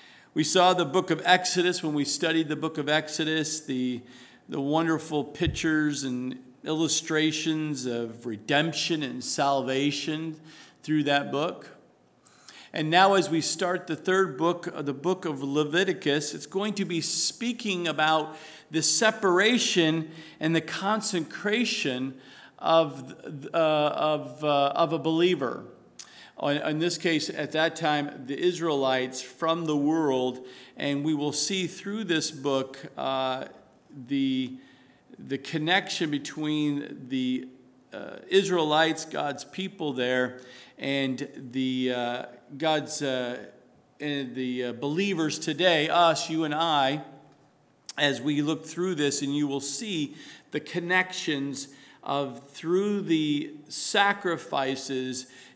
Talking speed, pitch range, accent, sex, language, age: 125 wpm, 140-165 Hz, American, male, English, 50-69